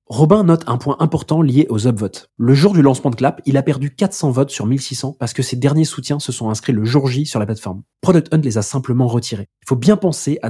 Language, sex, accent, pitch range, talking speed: French, male, French, 120-150 Hz, 265 wpm